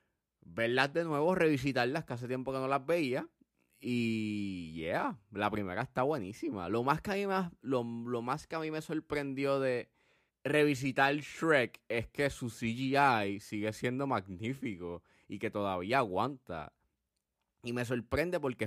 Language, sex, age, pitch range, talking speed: Spanish, male, 20-39, 100-130 Hz, 140 wpm